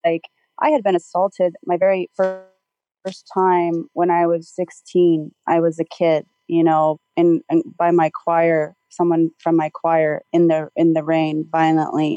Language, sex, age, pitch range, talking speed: English, female, 30-49, 165-250 Hz, 165 wpm